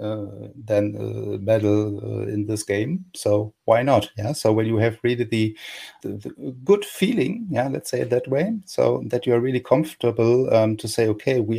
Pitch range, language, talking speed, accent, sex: 105-120 Hz, German, 200 wpm, German, male